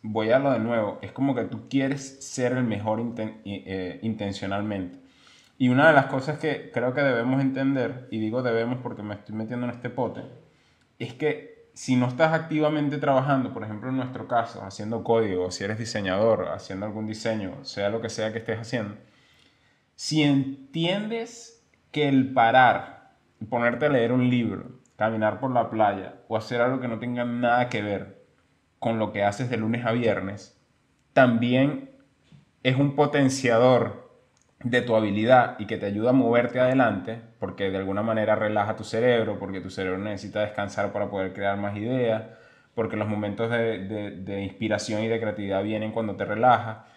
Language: Spanish